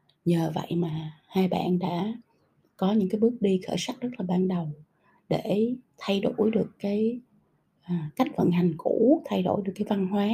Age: 20-39